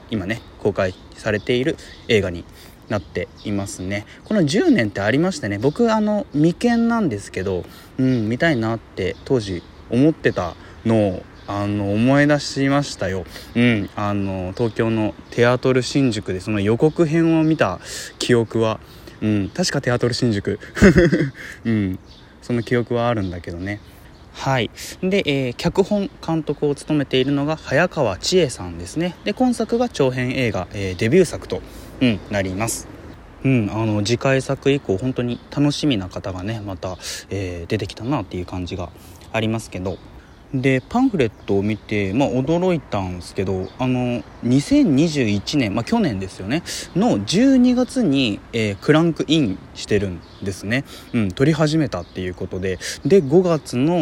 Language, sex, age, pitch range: Japanese, male, 20-39, 95-140 Hz